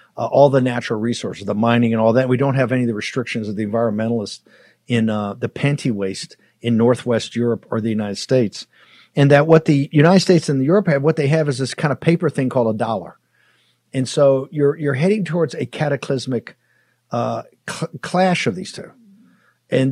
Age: 50-69